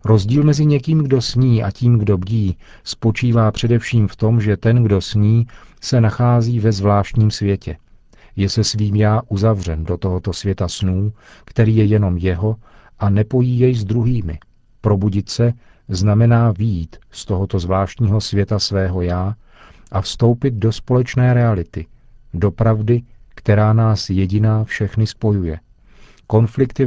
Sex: male